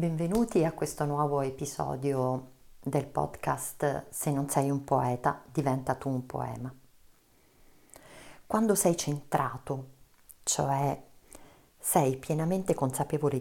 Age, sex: 40-59, female